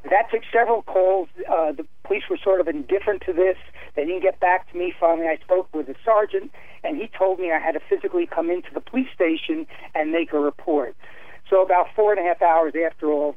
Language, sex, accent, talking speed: English, male, American, 235 wpm